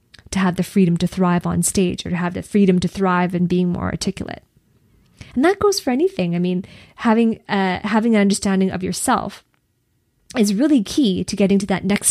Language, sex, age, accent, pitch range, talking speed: English, female, 20-39, American, 190-235 Hz, 205 wpm